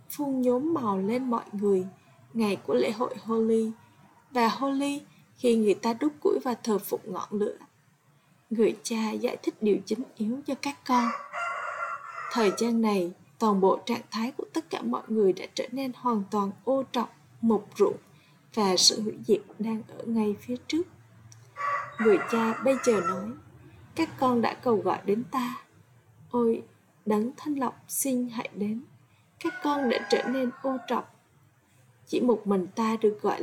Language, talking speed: Vietnamese, 170 wpm